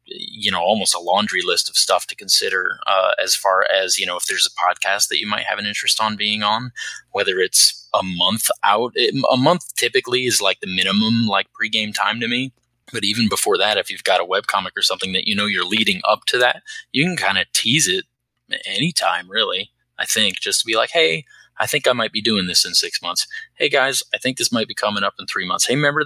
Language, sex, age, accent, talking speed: English, male, 20-39, American, 245 wpm